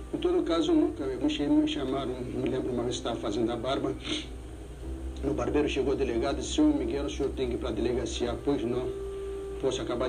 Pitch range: 305-355 Hz